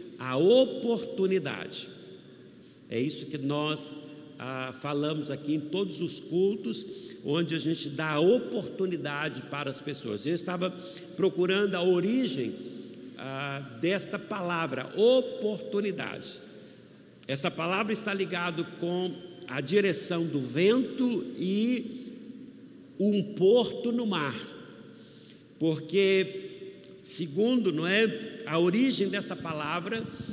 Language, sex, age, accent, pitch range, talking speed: Portuguese, male, 60-79, Brazilian, 160-225 Hz, 105 wpm